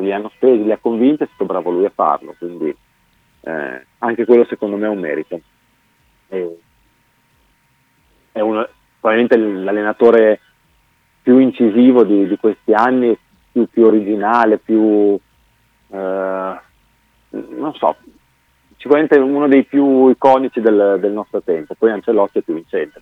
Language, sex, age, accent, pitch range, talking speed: Italian, male, 40-59, native, 95-125 Hz, 140 wpm